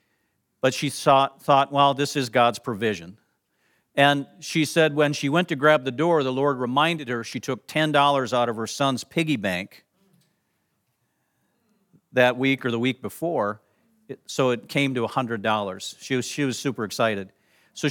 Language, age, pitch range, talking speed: English, 50-69, 140-195 Hz, 165 wpm